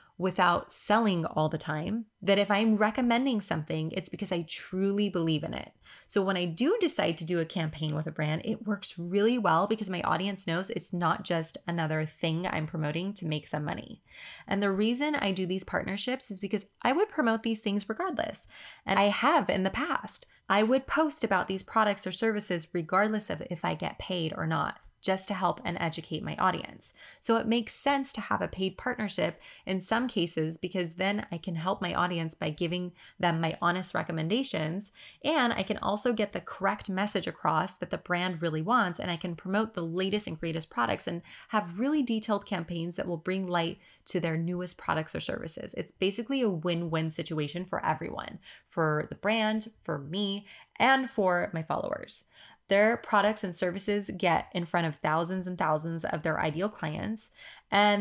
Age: 20-39